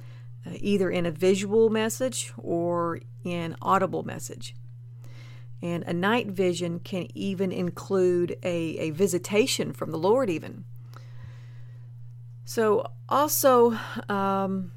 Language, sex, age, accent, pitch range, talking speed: English, female, 40-59, American, 120-200 Hz, 110 wpm